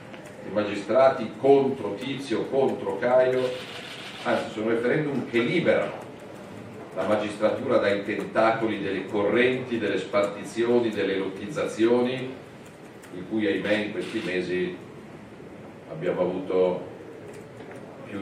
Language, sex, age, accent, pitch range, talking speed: Italian, male, 40-59, native, 90-110 Hz, 100 wpm